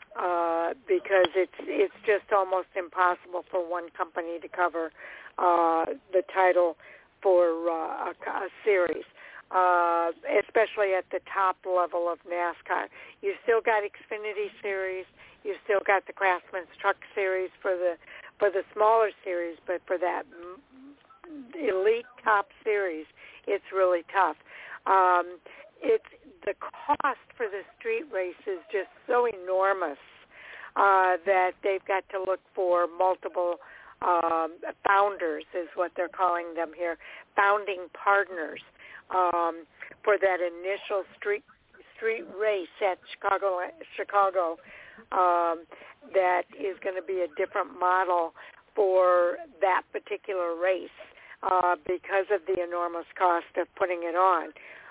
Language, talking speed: English, 130 wpm